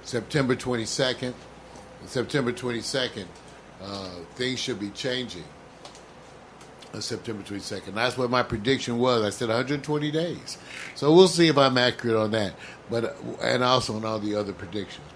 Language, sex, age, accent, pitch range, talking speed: English, male, 50-69, American, 110-140 Hz, 145 wpm